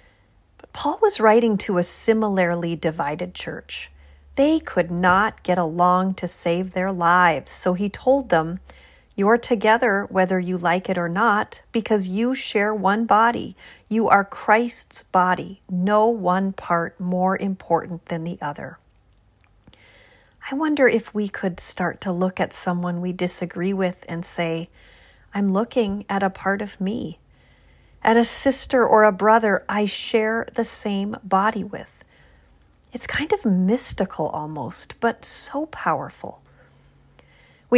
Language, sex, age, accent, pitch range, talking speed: English, female, 40-59, American, 175-225 Hz, 140 wpm